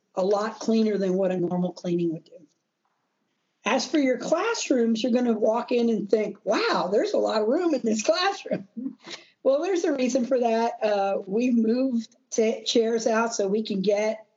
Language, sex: English, female